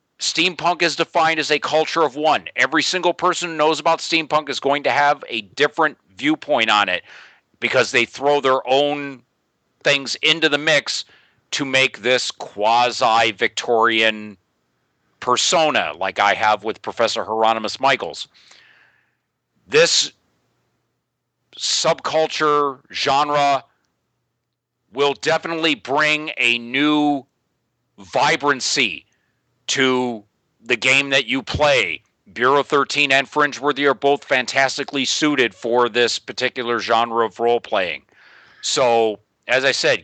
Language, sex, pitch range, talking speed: English, male, 115-150 Hz, 115 wpm